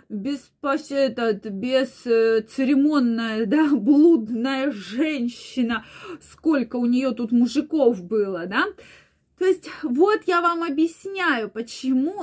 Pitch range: 240-320 Hz